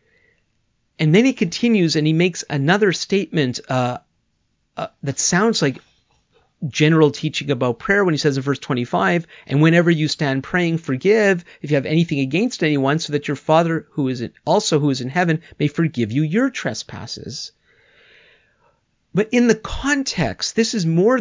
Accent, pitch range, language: American, 130-185 Hz, English